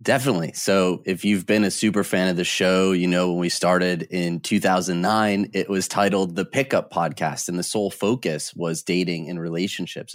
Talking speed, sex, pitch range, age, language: 190 wpm, male, 90-105 Hz, 30-49, English